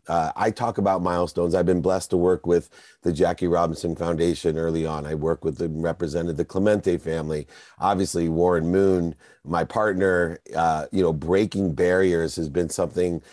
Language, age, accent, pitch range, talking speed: English, 40-59, American, 85-100 Hz, 170 wpm